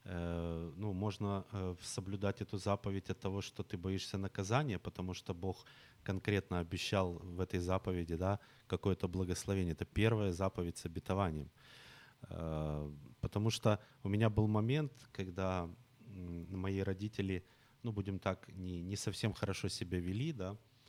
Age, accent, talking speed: 30-49, native, 125 wpm